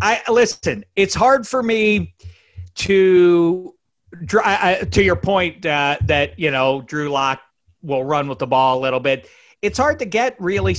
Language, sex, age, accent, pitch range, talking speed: English, male, 40-59, American, 120-165 Hz, 170 wpm